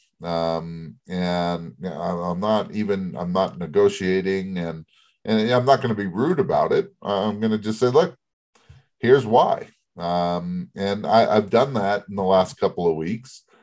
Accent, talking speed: American, 175 wpm